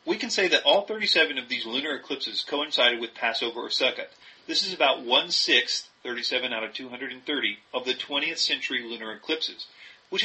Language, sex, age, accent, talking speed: English, male, 40-59, American, 175 wpm